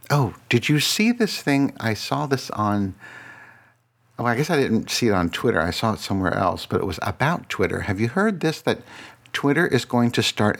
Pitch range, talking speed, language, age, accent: 95-120 Hz, 220 wpm, English, 60-79, American